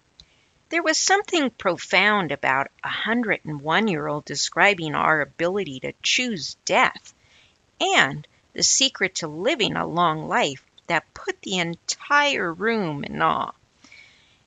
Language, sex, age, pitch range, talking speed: English, female, 50-69, 165-270 Hz, 115 wpm